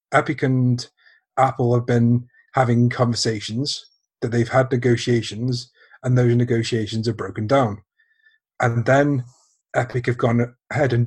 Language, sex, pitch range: English, male, 115-135 Hz